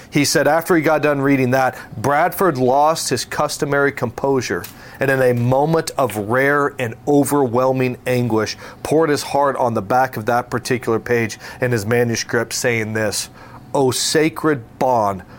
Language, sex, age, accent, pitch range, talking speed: English, male, 40-59, American, 120-150 Hz, 155 wpm